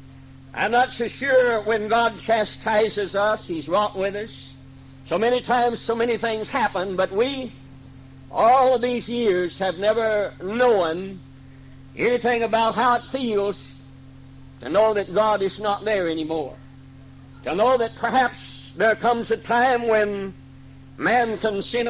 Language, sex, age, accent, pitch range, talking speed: English, male, 60-79, American, 135-225 Hz, 145 wpm